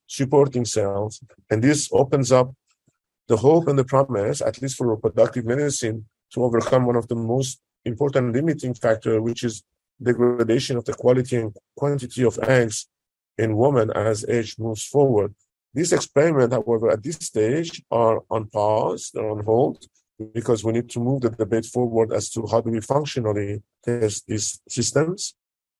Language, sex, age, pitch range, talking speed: English, male, 50-69, 115-135 Hz, 165 wpm